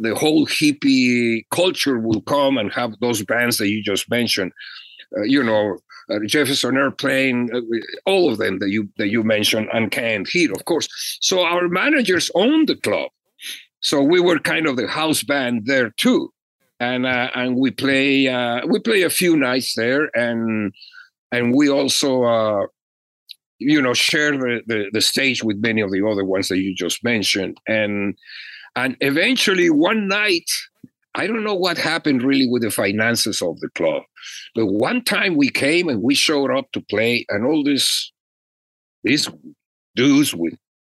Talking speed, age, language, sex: 170 wpm, 50-69, English, male